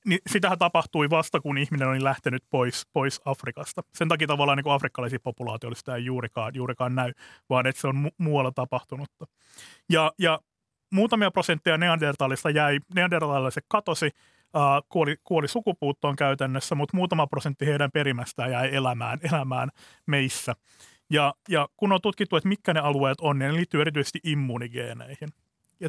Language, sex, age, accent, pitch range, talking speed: Finnish, male, 30-49, native, 130-160 Hz, 155 wpm